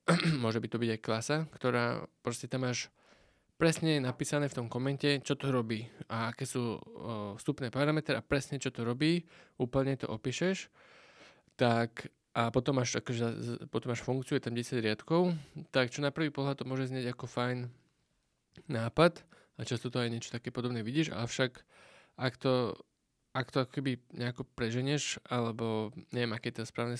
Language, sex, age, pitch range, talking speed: Slovak, male, 20-39, 115-135 Hz, 165 wpm